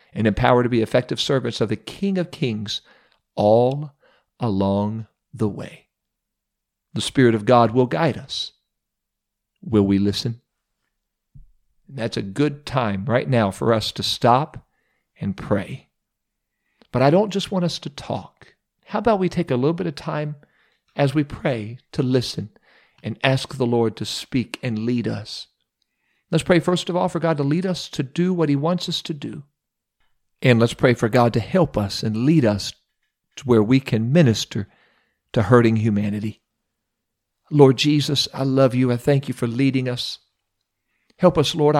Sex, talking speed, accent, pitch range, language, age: male, 170 wpm, American, 120-160 Hz, English, 50-69